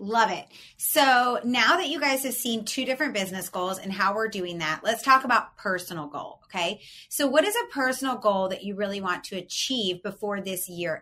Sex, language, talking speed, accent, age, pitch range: female, English, 210 wpm, American, 30-49, 195-250 Hz